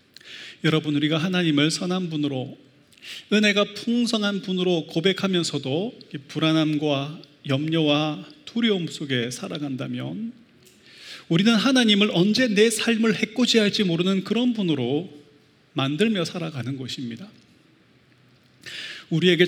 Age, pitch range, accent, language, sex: 30-49, 150-190 Hz, native, Korean, male